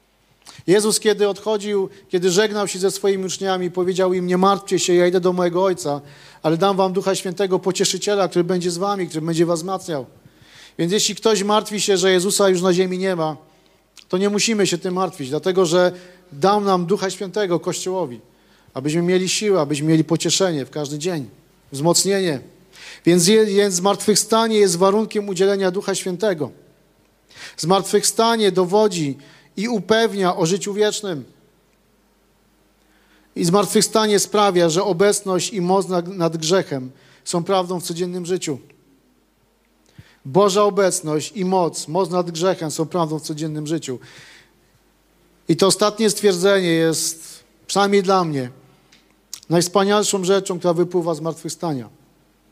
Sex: male